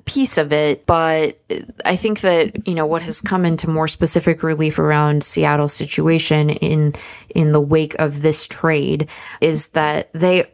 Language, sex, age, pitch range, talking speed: English, female, 20-39, 150-165 Hz, 165 wpm